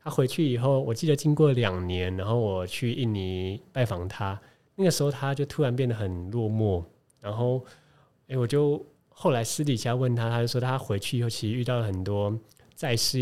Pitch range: 105-140 Hz